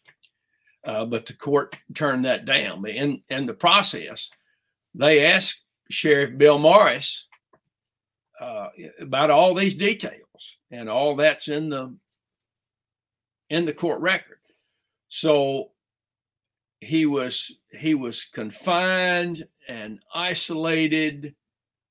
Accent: American